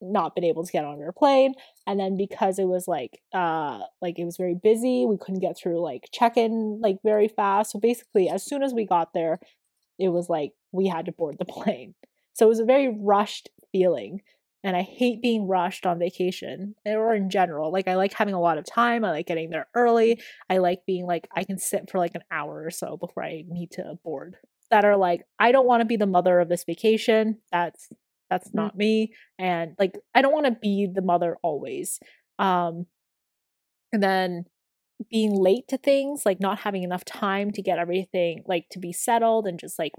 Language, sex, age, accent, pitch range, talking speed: English, female, 20-39, American, 175-220 Hz, 215 wpm